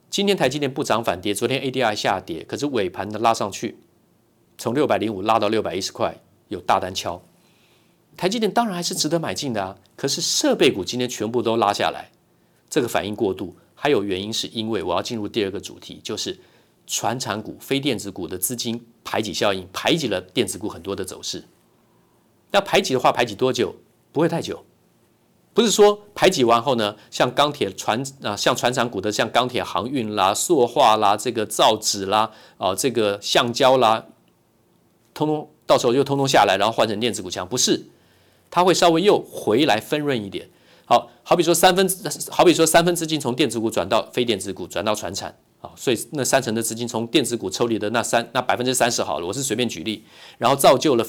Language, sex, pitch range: Chinese, male, 115-155 Hz